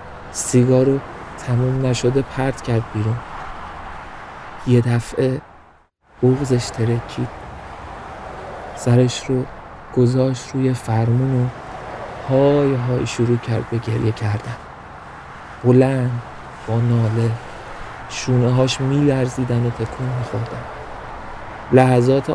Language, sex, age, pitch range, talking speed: Persian, male, 50-69, 115-130 Hz, 85 wpm